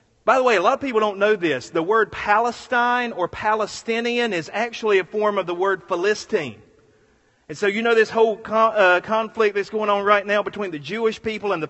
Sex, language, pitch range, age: male, English, 190-230 Hz, 40-59